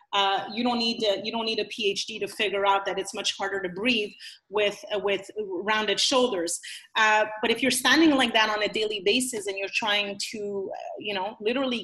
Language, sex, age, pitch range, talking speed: English, female, 30-49, 195-245 Hz, 205 wpm